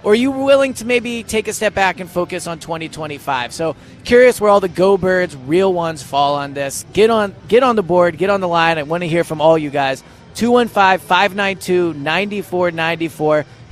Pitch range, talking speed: 150-195 Hz, 195 wpm